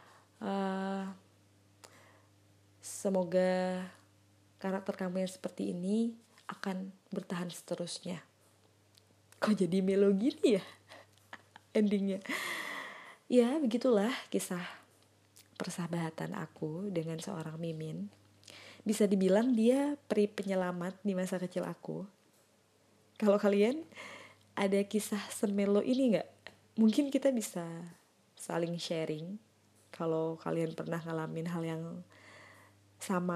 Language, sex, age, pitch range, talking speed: Indonesian, female, 20-39, 155-200 Hz, 95 wpm